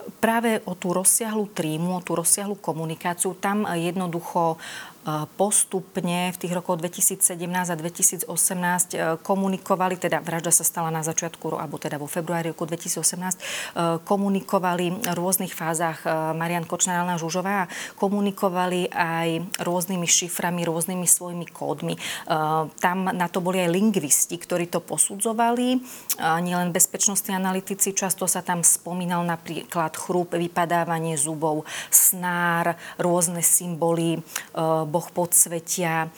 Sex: female